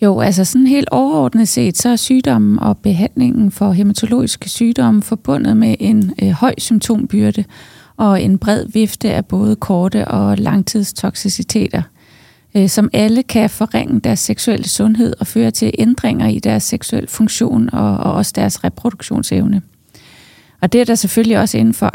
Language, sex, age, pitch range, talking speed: Danish, female, 30-49, 200-240 Hz, 155 wpm